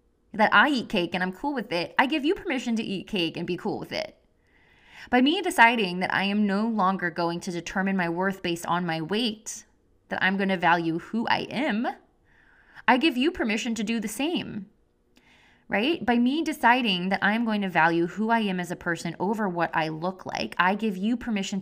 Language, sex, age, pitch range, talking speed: English, female, 20-39, 180-235 Hz, 215 wpm